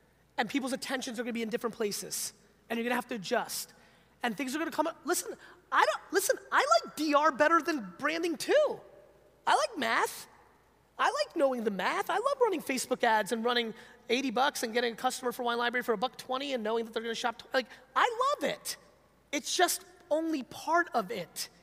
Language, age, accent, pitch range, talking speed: English, 30-49, American, 215-300 Hz, 220 wpm